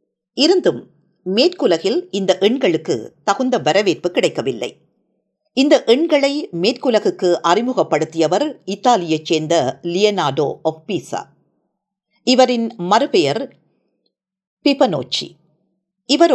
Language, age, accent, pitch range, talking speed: Tamil, 50-69, native, 175-260 Hz, 70 wpm